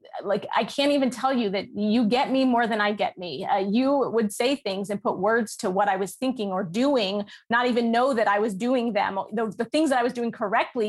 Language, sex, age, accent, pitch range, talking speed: English, female, 30-49, American, 205-245 Hz, 255 wpm